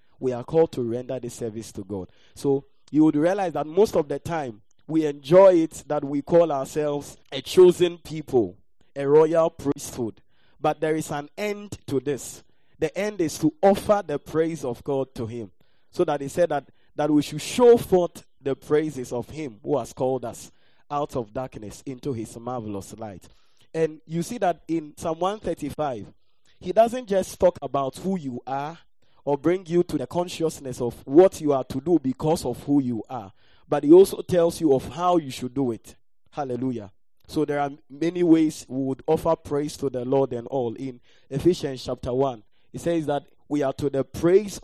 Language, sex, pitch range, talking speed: English, male, 130-170 Hz, 195 wpm